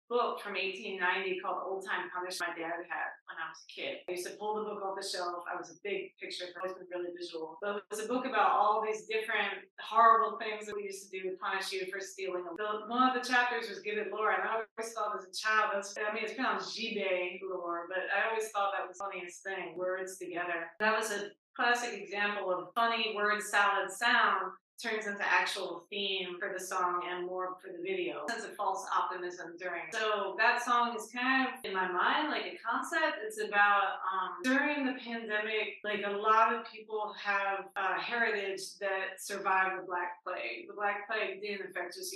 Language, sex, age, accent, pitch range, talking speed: English, female, 30-49, American, 185-225 Hz, 220 wpm